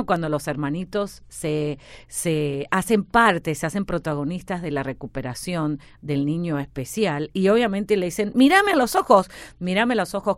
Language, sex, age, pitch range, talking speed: Spanish, female, 40-59, 140-190 Hz, 160 wpm